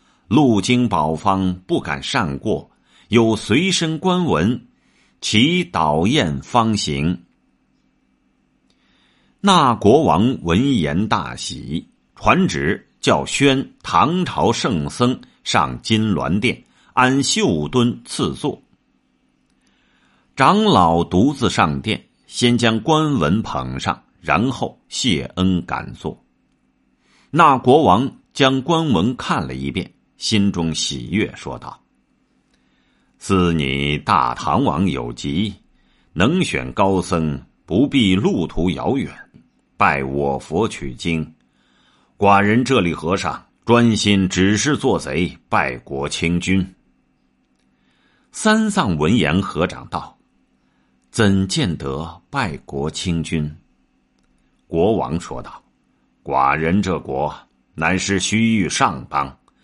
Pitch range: 70-120 Hz